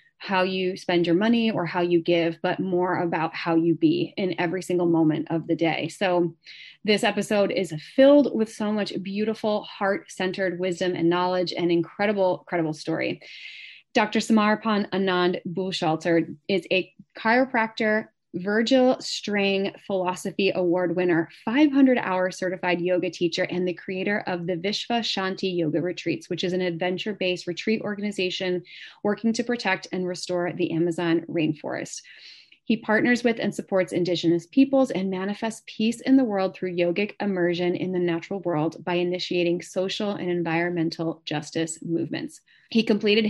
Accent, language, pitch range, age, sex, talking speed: American, English, 175-210 Hz, 20-39, female, 150 wpm